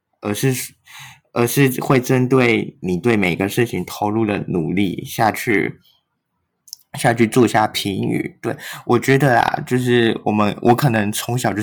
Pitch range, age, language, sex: 105-120 Hz, 20-39, Chinese, male